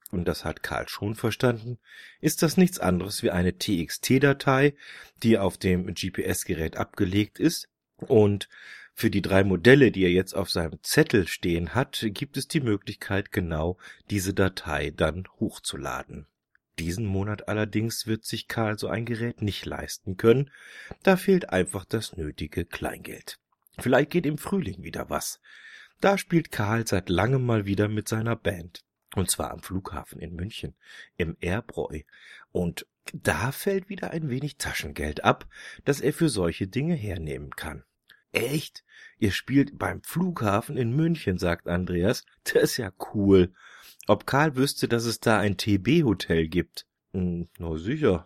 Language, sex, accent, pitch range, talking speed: German, male, German, 90-125 Hz, 155 wpm